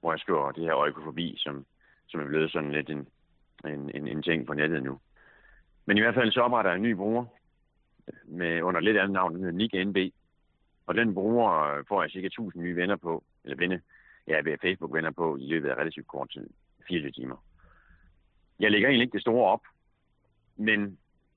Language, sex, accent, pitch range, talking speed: Danish, male, native, 80-100 Hz, 195 wpm